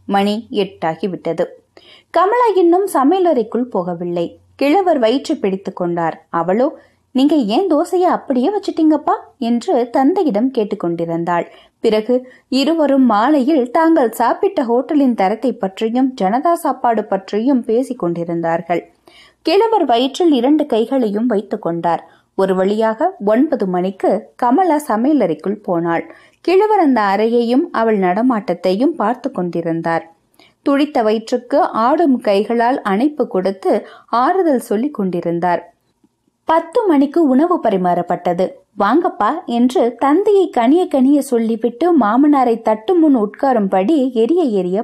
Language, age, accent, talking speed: Tamil, 20-39, native, 85 wpm